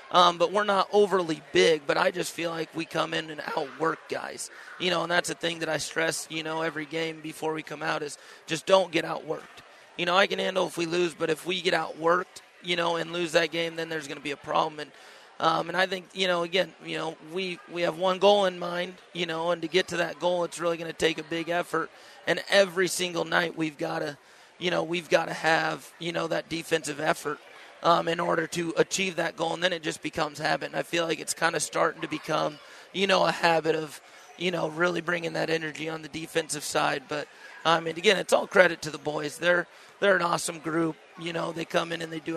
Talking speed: 250 wpm